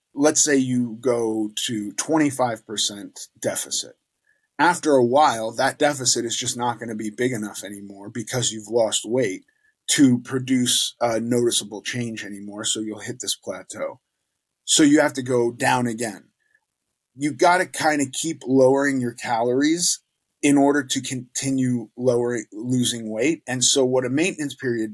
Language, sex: English, male